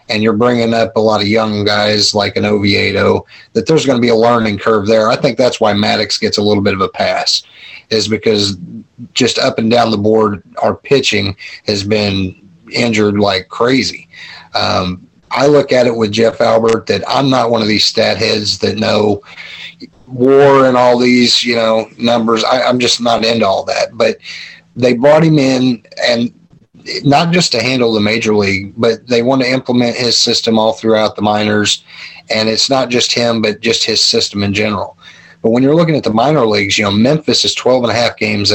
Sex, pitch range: male, 105-120 Hz